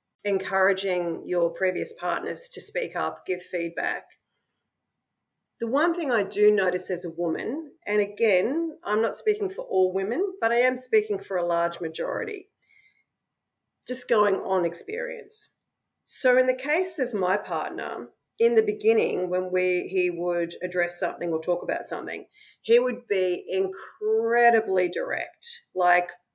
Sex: female